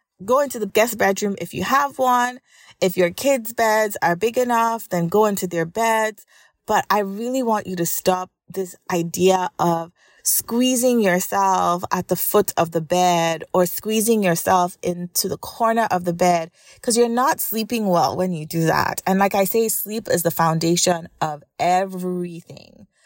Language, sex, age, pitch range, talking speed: English, female, 30-49, 175-220 Hz, 175 wpm